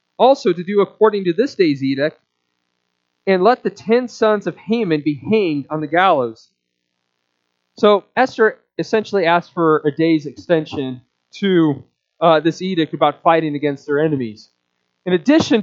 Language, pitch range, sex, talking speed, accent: English, 130-200 Hz, male, 150 wpm, American